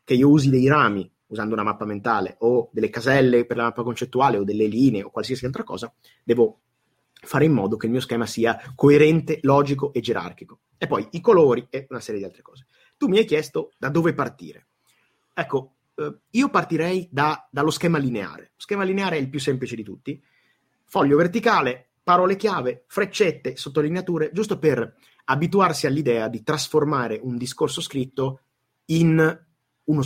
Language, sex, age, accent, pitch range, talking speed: Italian, male, 30-49, native, 120-155 Hz, 170 wpm